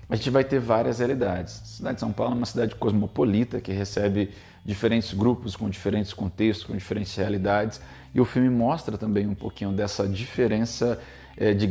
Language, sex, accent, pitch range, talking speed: Portuguese, male, Brazilian, 95-115 Hz, 180 wpm